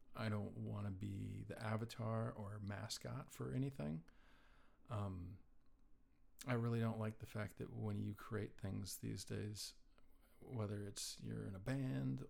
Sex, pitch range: male, 105-120 Hz